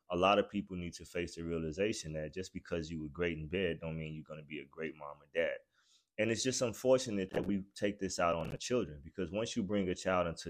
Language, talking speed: English, 270 wpm